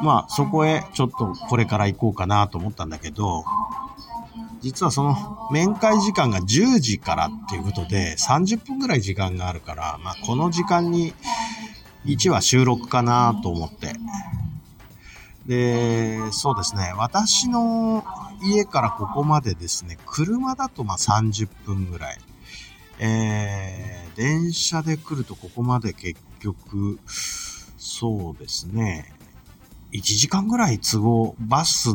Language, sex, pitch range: Japanese, male, 100-160 Hz